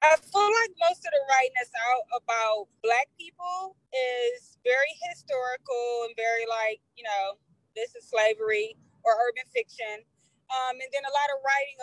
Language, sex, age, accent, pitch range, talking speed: English, female, 20-39, American, 250-345 Hz, 165 wpm